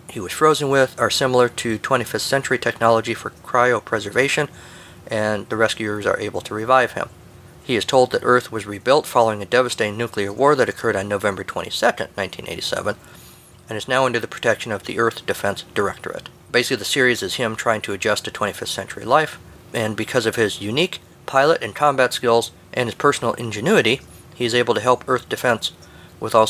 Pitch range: 105-125 Hz